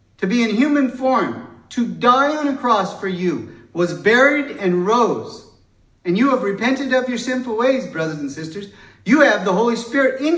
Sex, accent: male, American